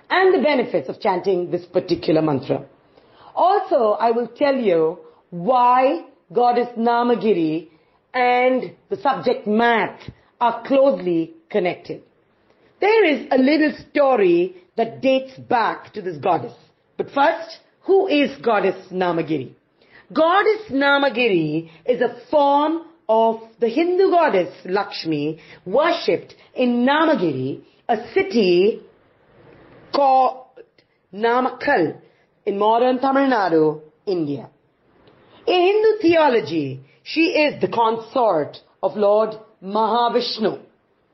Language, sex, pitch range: English, female, 190-290 Hz